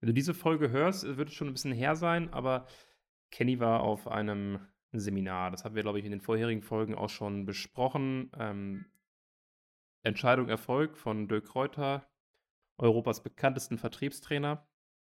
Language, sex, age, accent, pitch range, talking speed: German, male, 30-49, German, 110-130 Hz, 155 wpm